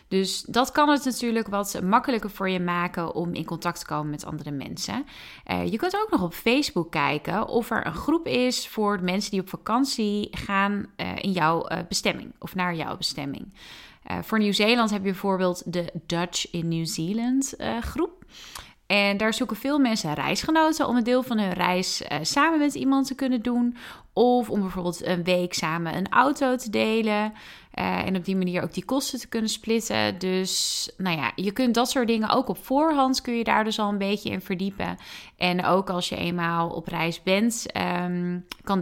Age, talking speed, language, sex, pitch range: 30-49, 195 wpm, Dutch, female, 175-245 Hz